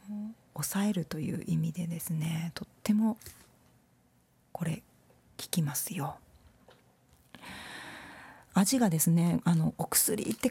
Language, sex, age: Japanese, female, 40-59